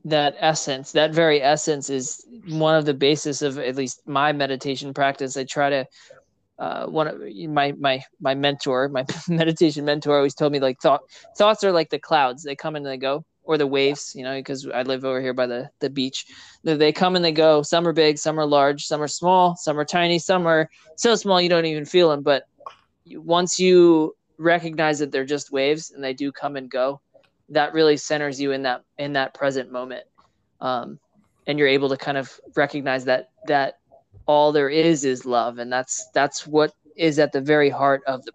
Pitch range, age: 140-160 Hz, 20-39